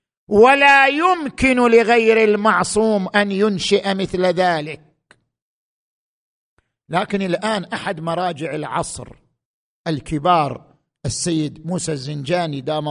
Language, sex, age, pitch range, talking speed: Arabic, male, 50-69, 175-245 Hz, 85 wpm